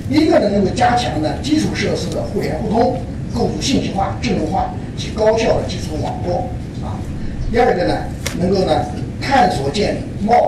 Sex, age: male, 50-69